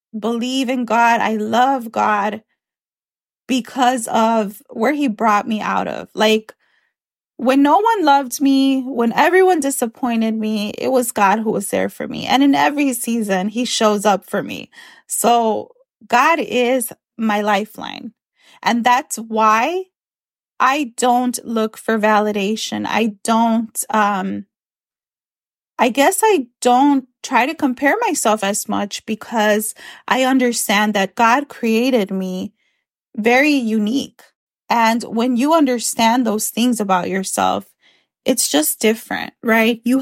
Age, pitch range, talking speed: 20-39, 215-260 Hz, 135 wpm